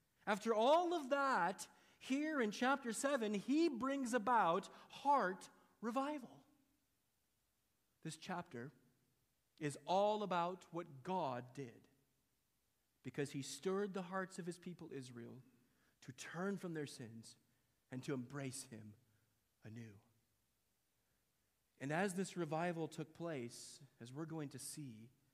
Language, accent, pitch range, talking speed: English, American, 135-195 Hz, 120 wpm